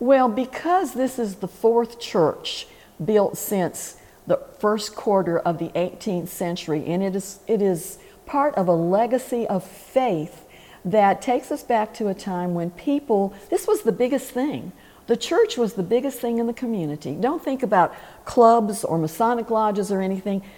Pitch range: 180-235 Hz